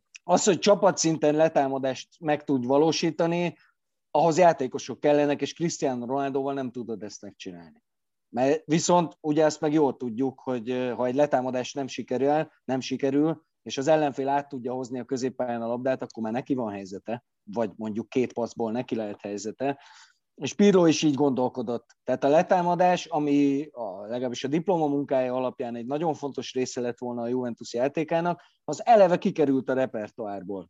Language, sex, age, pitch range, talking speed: Hungarian, male, 30-49, 125-155 Hz, 160 wpm